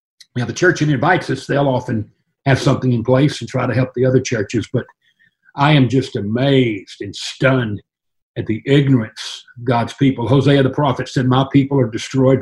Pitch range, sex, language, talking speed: 125-150 Hz, male, English, 190 wpm